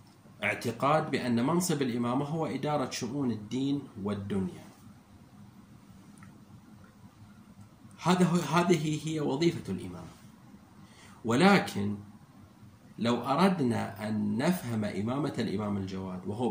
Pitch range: 105-130 Hz